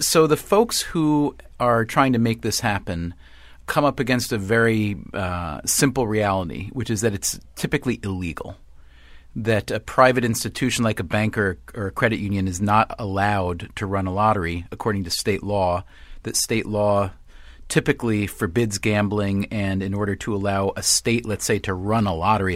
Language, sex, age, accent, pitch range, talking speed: English, male, 40-59, American, 100-120 Hz, 175 wpm